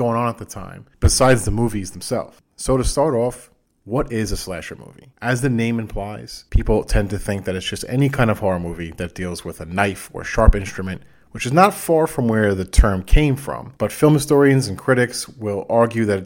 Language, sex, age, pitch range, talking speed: English, male, 30-49, 95-125 Hz, 220 wpm